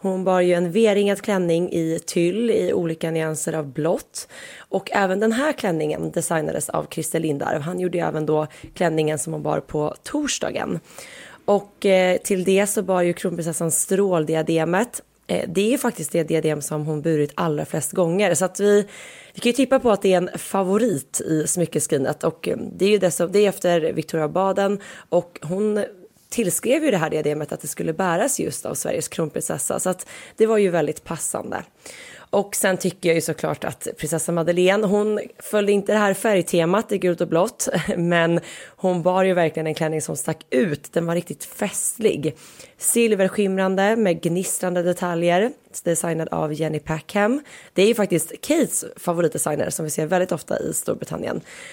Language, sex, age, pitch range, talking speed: Swedish, female, 20-39, 165-200 Hz, 180 wpm